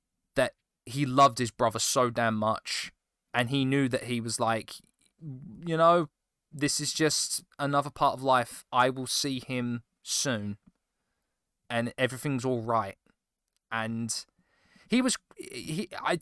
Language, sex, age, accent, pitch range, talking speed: English, male, 20-39, British, 115-145 Hz, 135 wpm